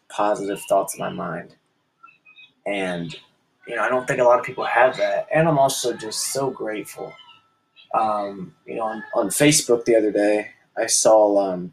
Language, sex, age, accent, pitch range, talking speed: English, male, 20-39, American, 100-140 Hz, 180 wpm